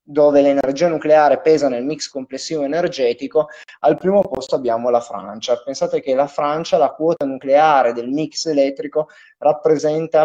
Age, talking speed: 20-39, 145 wpm